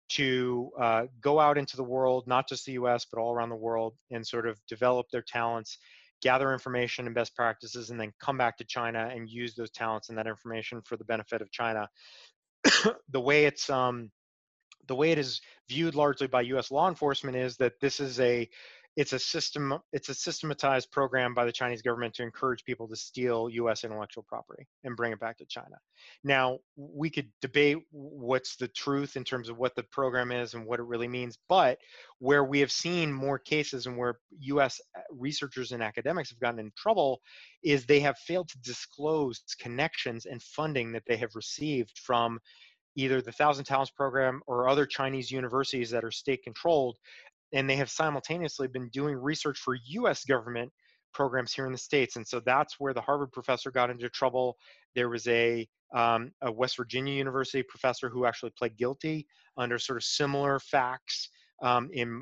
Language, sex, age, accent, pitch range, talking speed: English, male, 30-49, American, 120-140 Hz, 190 wpm